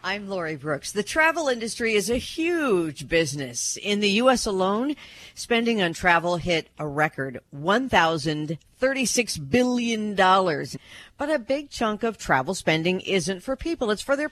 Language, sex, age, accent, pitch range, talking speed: English, female, 50-69, American, 145-210 Hz, 150 wpm